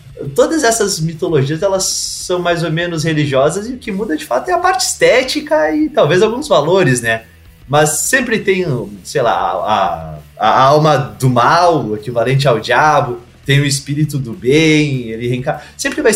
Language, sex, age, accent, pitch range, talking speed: Portuguese, male, 20-39, Brazilian, 120-180 Hz, 165 wpm